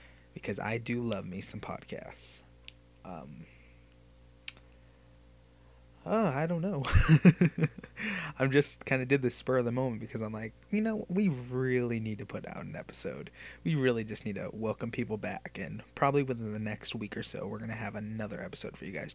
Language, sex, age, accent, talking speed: English, male, 20-39, American, 190 wpm